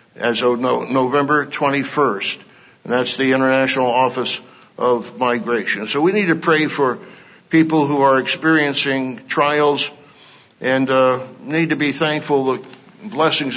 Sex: male